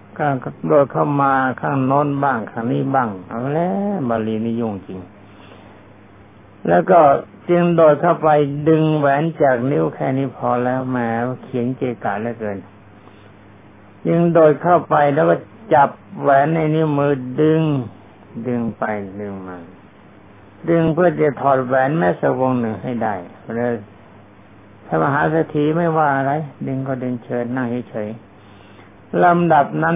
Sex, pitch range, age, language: male, 100-145 Hz, 60-79, Thai